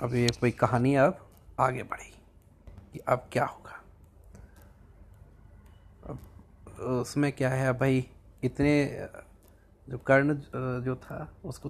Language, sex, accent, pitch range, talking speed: Hindi, male, native, 100-145 Hz, 115 wpm